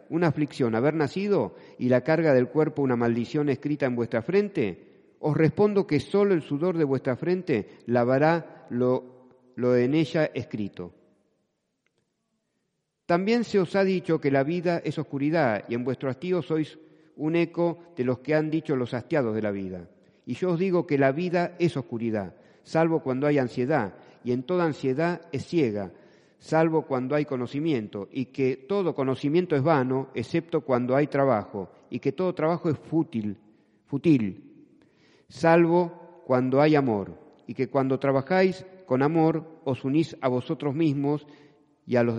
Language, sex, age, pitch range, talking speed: Spanish, male, 50-69, 125-160 Hz, 160 wpm